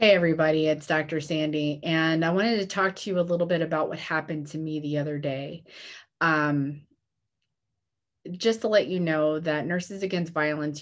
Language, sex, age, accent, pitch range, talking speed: English, female, 30-49, American, 145-170 Hz, 185 wpm